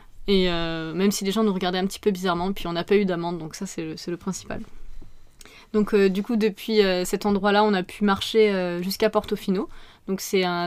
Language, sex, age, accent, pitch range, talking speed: French, female, 20-39, French, 185-220 Hz, 240 wpm